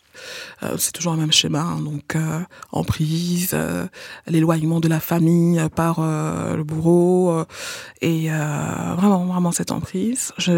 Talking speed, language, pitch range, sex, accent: 160 wpm, French, 165-210 Hz, female, French